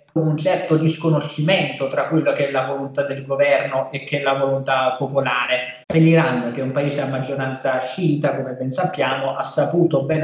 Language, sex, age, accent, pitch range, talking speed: Italian, male, 20-39, native, 135-150 Hz, 180 wpm